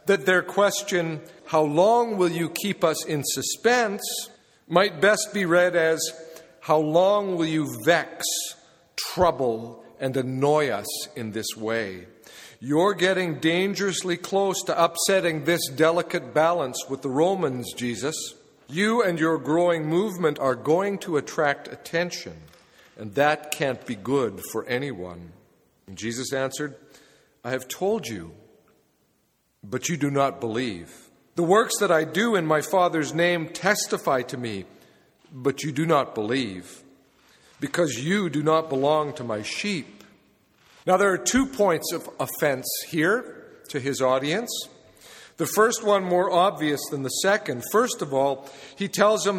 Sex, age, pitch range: male, 50-69, 140-185 Hz